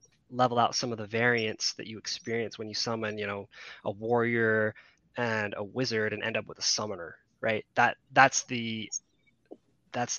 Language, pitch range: English, 115-135 Hz